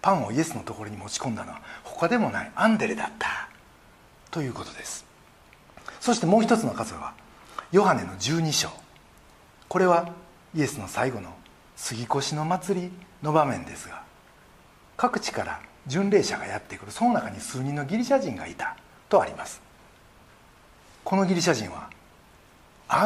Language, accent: Japanese, native